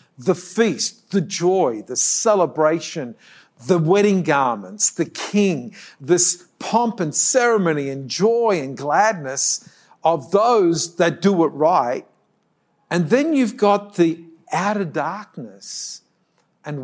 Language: English